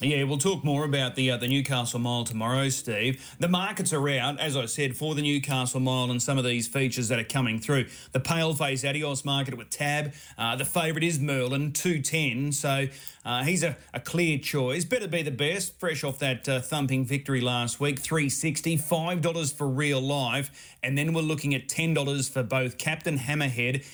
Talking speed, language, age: 200 wpm, English, 30-49